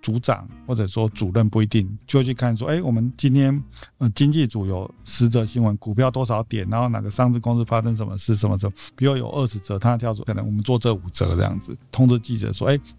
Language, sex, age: Chinese, male, 50-69